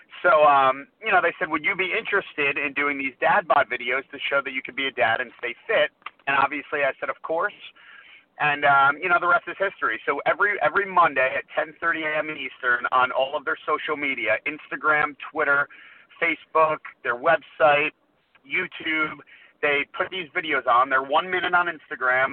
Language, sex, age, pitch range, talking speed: English, male, 30-49, 145-195 Hz, 190 wpm